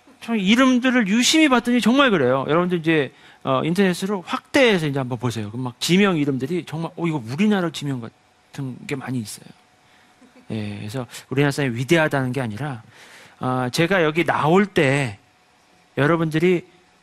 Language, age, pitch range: Korean, 40-59, 130-205 Hz